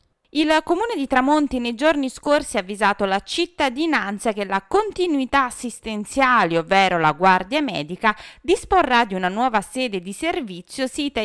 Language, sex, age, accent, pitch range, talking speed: Italian, female, 20-39, native, 185-270 Hz, 145 wpm